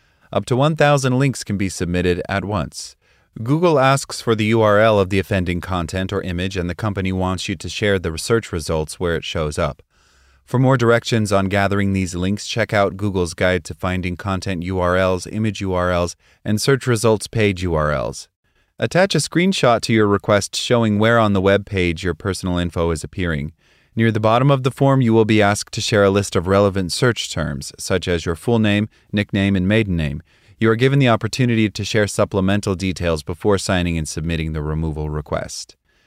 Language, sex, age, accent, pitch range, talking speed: English, male, 30-49, American, 85-115 Hz, 195 wpm